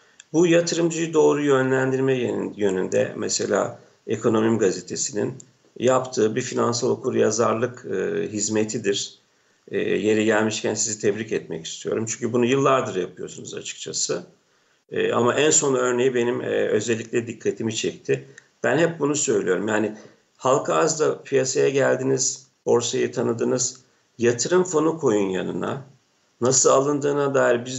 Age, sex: 50-69, male